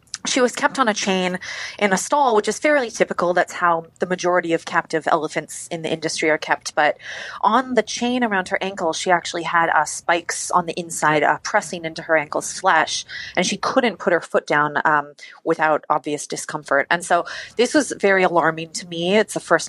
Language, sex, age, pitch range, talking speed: English, female, 30-49, 165-205 Hz, 205 wpm